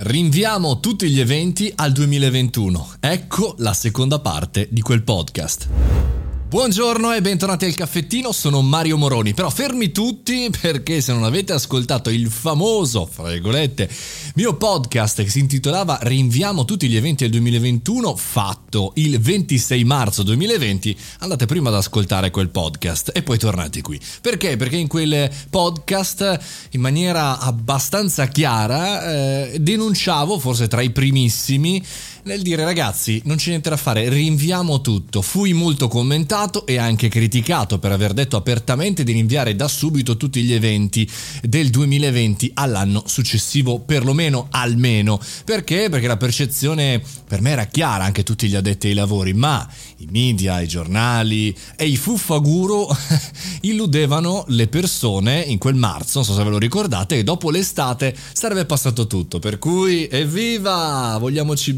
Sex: male